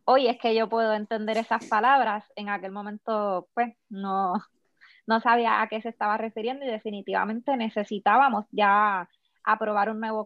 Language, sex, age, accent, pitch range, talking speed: Spanish, female, 20-39, American, 210-245 Hz, 160 wpm